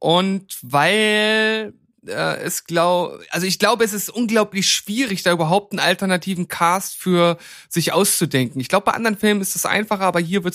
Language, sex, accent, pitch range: German, male, German, 160-200 Hz